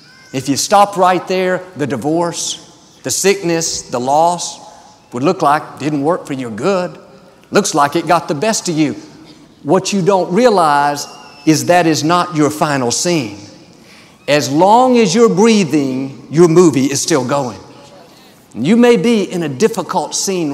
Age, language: 50-69, English